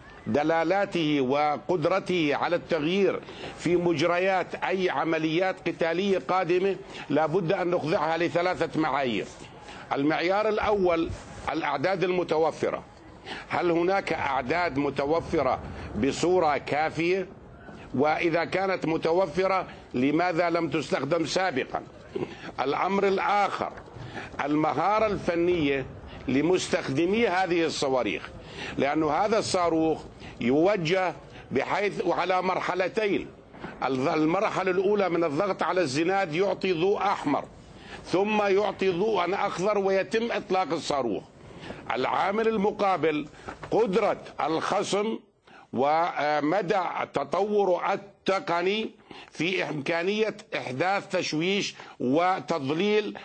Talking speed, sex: 85 wpm, male